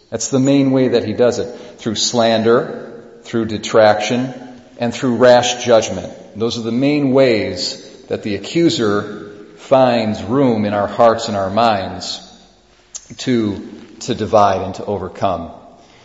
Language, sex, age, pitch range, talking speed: English, male, 40-59, 105-130 Hz, 140 wpm